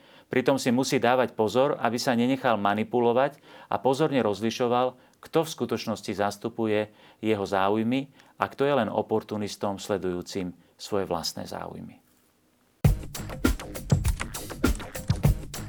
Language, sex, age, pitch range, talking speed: Slovak, male, 40-59, 105-130 Hz, 105 wpm